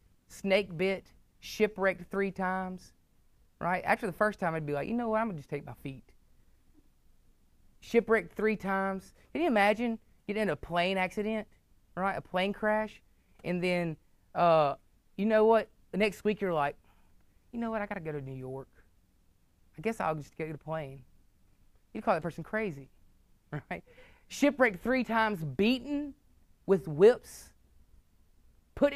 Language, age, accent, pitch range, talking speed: English, 30-49, American, 155-220 Hz, 160 wpm